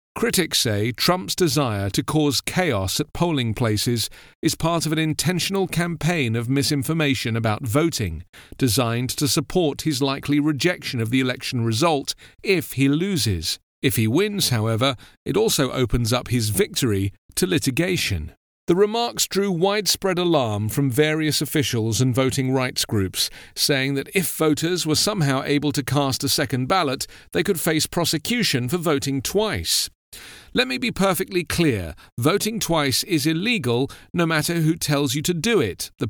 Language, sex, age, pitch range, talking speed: English, male, 40-59, 120-175 Hz, 155 wpm